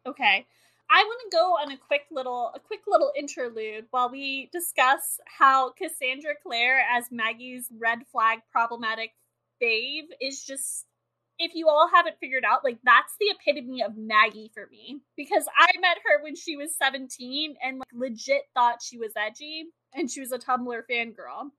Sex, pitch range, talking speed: female, 245-320 Hz, 170 wpm